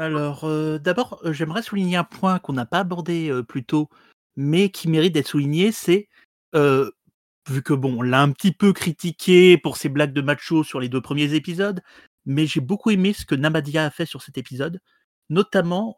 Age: 30-49